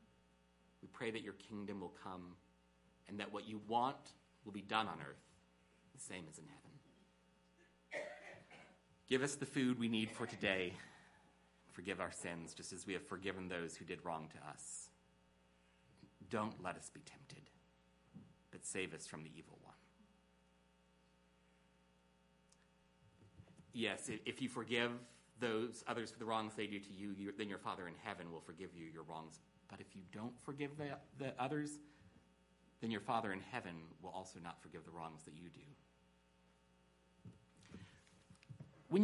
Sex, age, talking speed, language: male, 30-49, 155 wpm, English